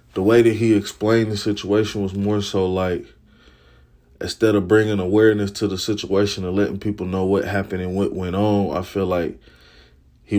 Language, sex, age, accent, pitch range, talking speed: English, male, 20-39, American, 95-105 Hz, 185 wpm